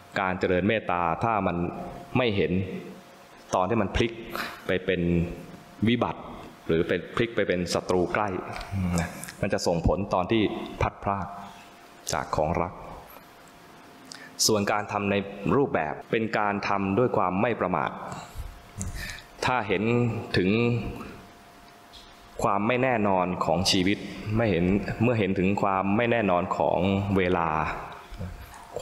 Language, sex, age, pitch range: Thai, male, 20-39, 90-105 Hz